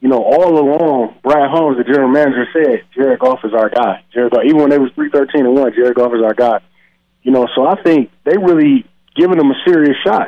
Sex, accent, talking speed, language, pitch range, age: male, American, 230 wpm, English, 125-155 Hz, 20-39